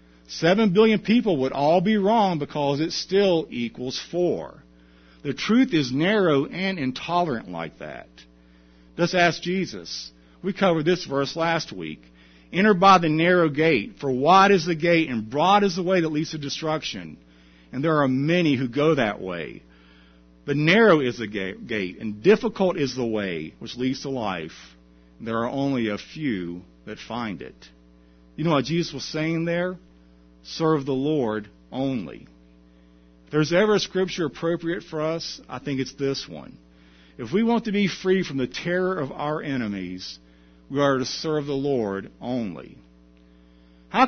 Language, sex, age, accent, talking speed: English, male, 50-69, American, 165 wpm